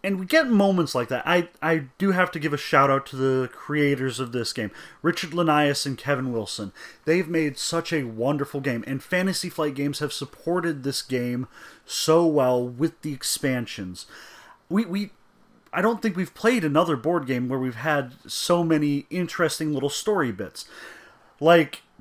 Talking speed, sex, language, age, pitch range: 175 wpm, male, English, 30-49, 140-185 Hz